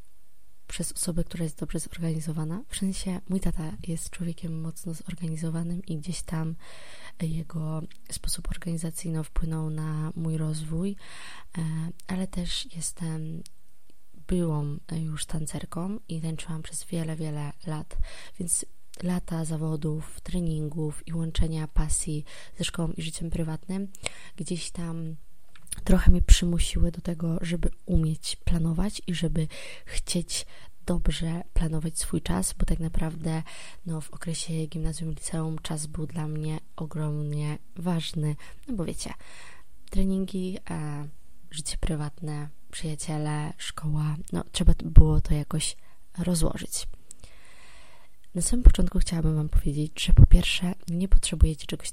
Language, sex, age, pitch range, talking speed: Polish, female, 20-39, 155-175 Hz, 120 wpm